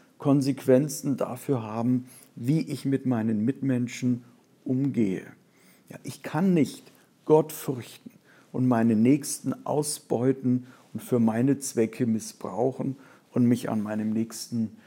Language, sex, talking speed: German, male, 115 wpm